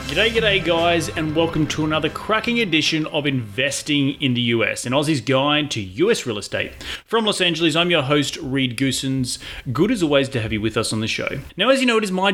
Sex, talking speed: male, 230 wpm